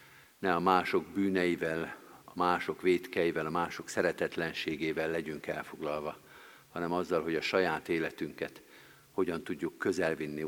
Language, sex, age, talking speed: Hungarian, male, 50-69, 120 wpm